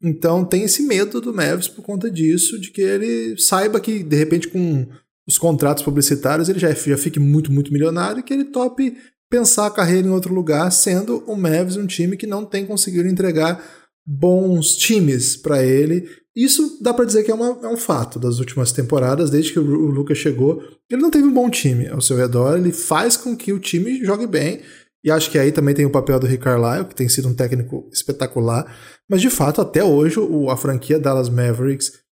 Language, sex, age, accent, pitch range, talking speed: Portuguese, male, 20-39, Brazilian, 135-190 Hz, 215 wpm